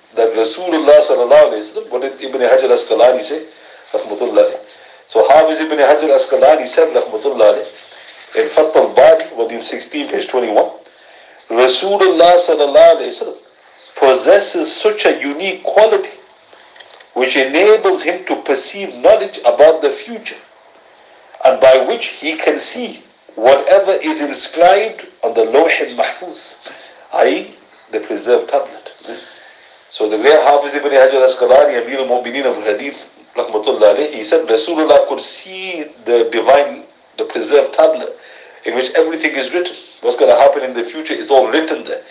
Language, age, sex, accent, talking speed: English, 50-69, male, Indian, 135 wpm